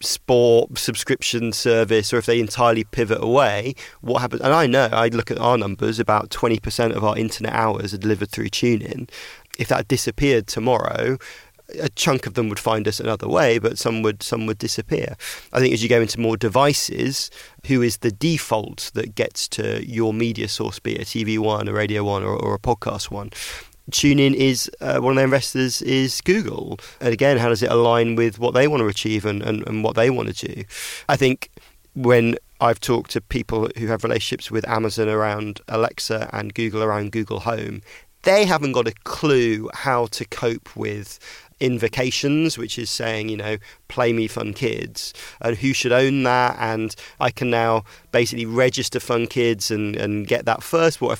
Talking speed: 195 wpm